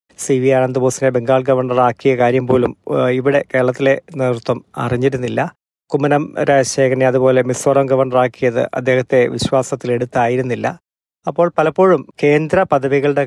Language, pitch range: Malayalam, 130-145 Hz